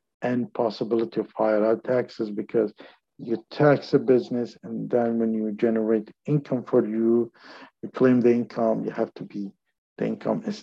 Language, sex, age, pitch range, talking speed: English, male, 50-69, 115-135 Hz, 165 wpm